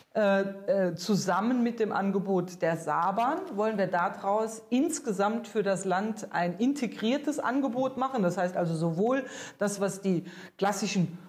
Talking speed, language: 145 wpm, German